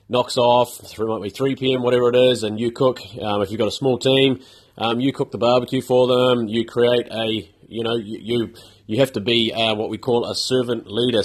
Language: English